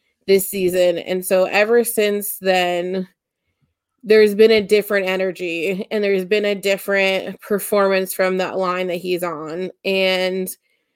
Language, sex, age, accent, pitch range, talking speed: English, female, 20-39, American, 185-225 Hz, 135 wpm